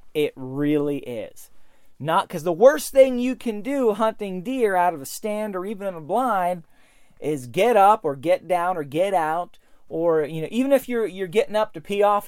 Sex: male